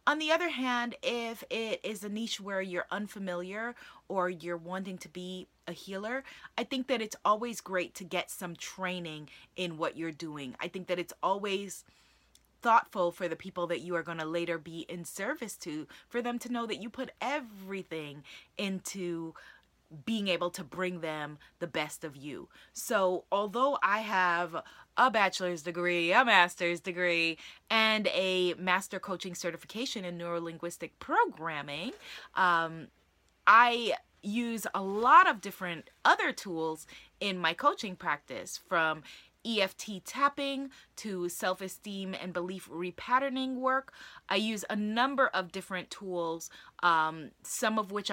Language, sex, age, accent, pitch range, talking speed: English, female, 20-39, American, 170-225 Hz, 150 wpm